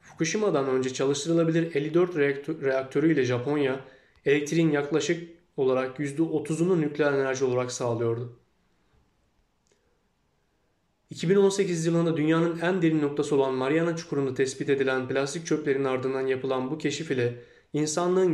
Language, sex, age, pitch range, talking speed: Turkish, male, 30-49, 130-160 Hz, 110 wpm